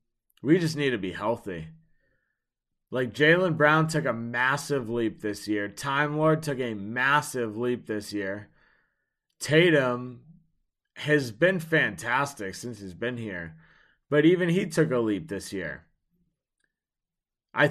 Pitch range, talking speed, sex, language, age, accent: 105-155 Hz, 135 wpm, male, English, 30-49, American